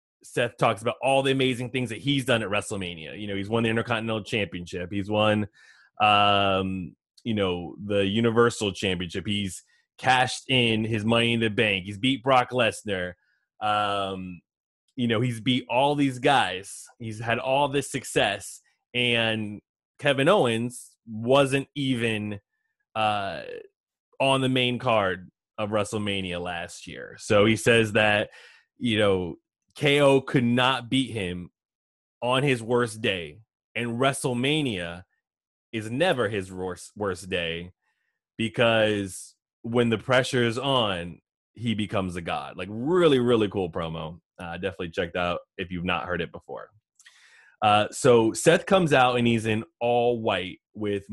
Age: 20-39